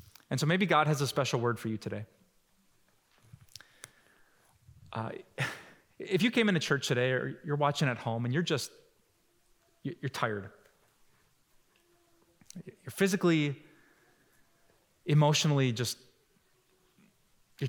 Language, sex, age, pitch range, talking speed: English, male, 30-49, 135-175 Hz, 125 wpm